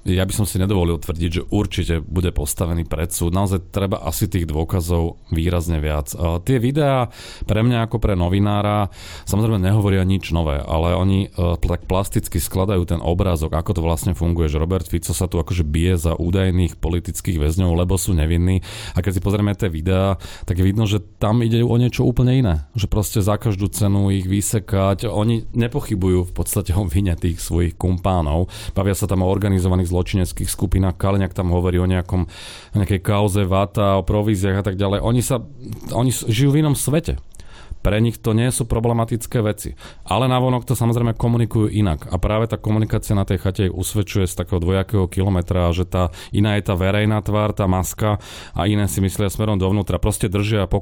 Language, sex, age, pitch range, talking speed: Slovak, male, 30-49, 90-105 Hz, 185 wpm